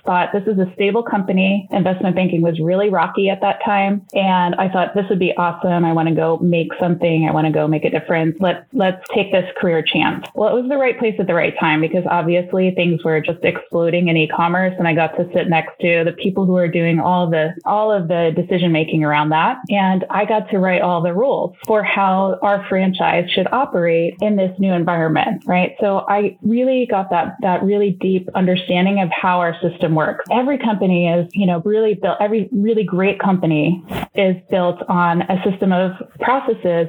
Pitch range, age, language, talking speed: 170-205 Hz, 20-39, English, 210 wpm